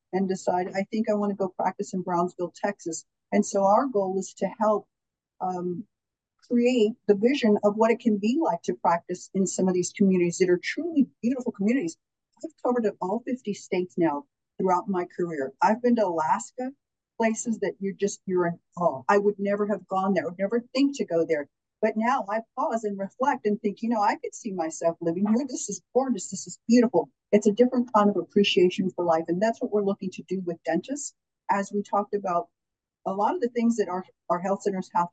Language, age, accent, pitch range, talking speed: English, 50-69, American, 175-220 Hz, 220 wpm